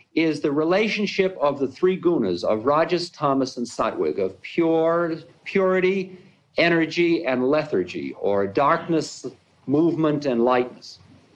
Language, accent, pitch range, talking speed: English, American, 135-180 Hz, 120 wpm